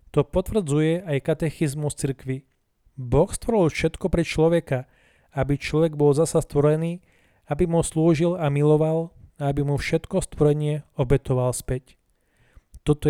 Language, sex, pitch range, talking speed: Slovak, male, 140-165 Hz, 130 wpm